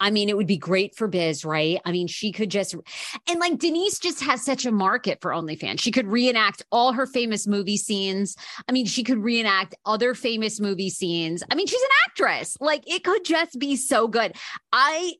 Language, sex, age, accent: English, female, 30-49, American